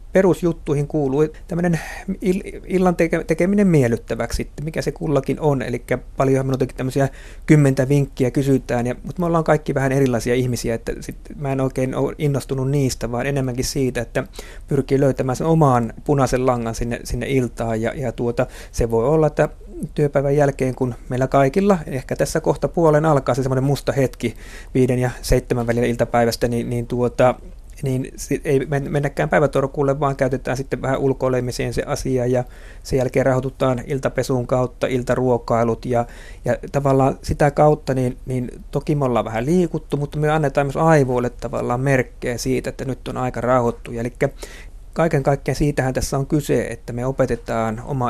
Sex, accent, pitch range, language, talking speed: male, native, 120-145 Hz, Finnish, 160 wpm